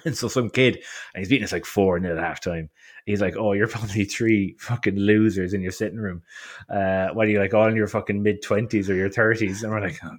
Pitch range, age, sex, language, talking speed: 100-130 Hz, 20-39, male, English, 240 wpm